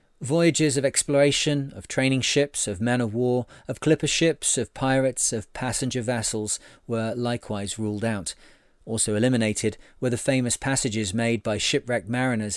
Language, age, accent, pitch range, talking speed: English, 40-59, British, 110-135 Hz, 155 wpm